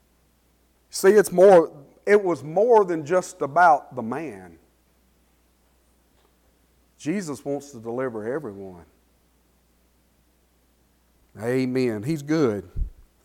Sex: male